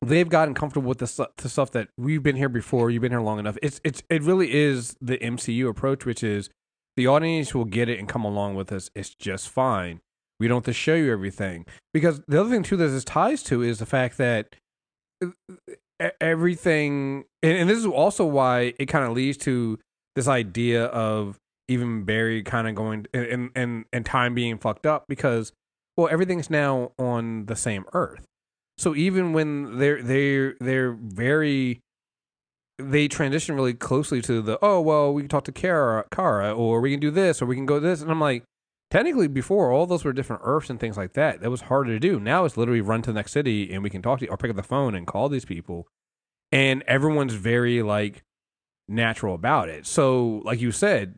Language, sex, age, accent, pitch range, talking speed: English, male, 30-49, American, 115-150 Hz, 210 wpm